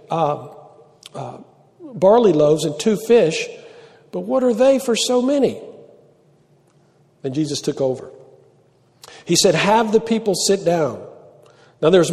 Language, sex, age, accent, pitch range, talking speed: English, male, 50-69, American, 160-220 Hz, 140 wpm